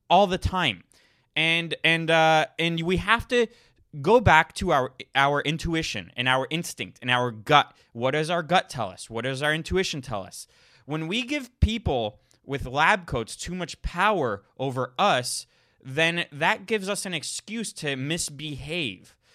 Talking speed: 165 wpm